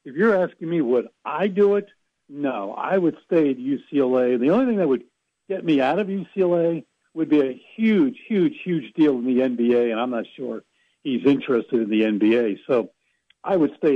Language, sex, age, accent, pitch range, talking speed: English, male, 60-79, American, 135-185 Hz, 200 wpm